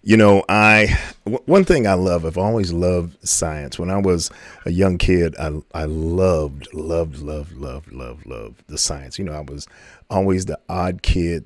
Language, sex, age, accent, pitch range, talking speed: English, male, 40-59, American, 80-95 Hz, 185 wpm